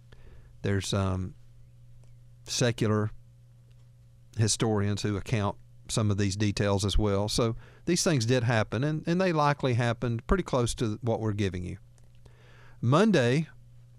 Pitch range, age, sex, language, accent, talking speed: 115-125 Hz, 50-69, male, English, American, 130 wpm